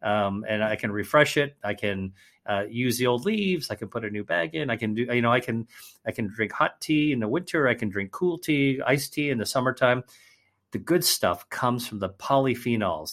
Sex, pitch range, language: male, 100-130 Hz, English